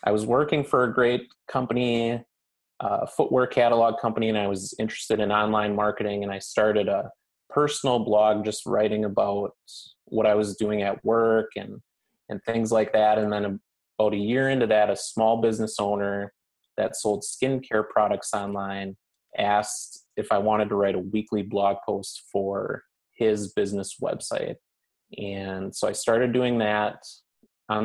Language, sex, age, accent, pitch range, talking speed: English, male, 20-39, American, 100-115 Hz, 160 wpm